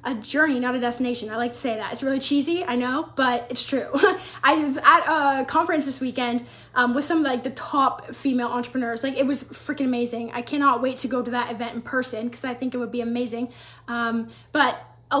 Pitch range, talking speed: 245-290 Hz, 230 wpm